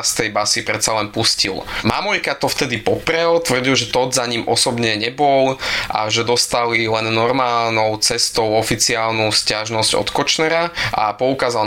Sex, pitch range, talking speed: male, 110-125 Hz, 150 wpm